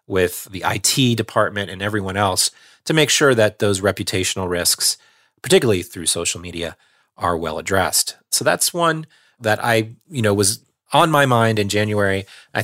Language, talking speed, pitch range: English, 165 wpm, 100-125 Hz